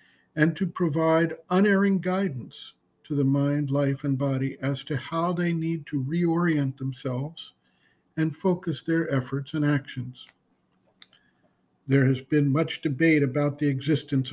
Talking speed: 140 wpm